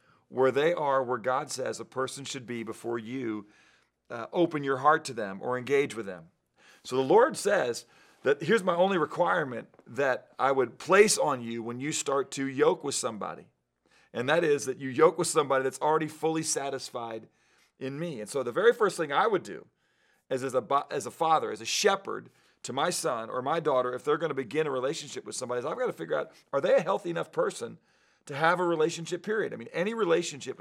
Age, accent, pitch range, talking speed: 40-59, American, 130-175 Hz, 210 wpm